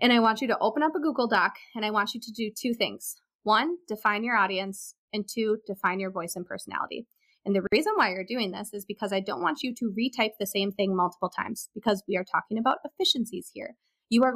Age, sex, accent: 20-39, female, American